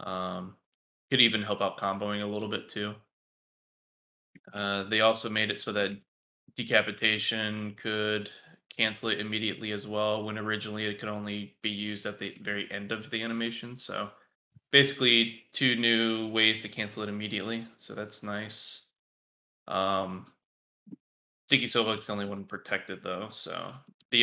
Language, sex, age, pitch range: English, male, 20-39, 100-110 Hz